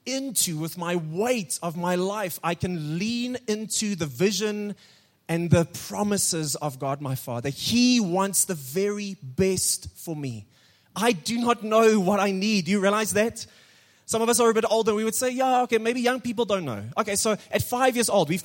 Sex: male